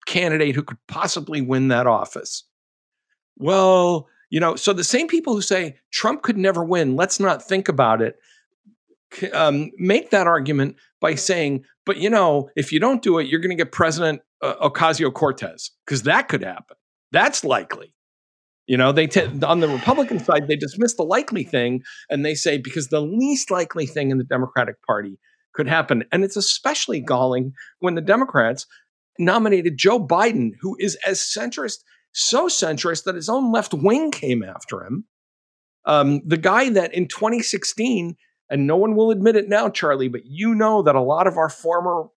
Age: 50-69